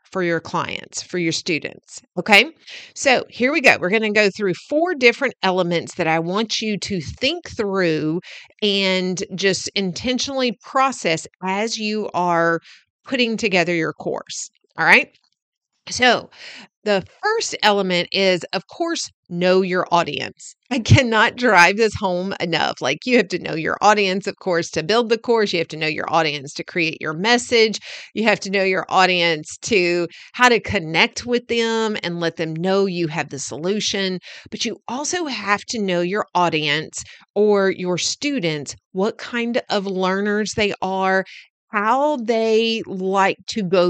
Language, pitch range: English, 175-230 Hz